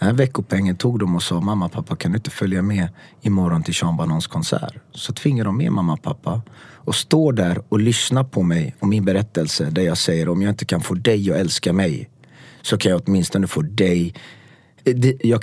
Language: English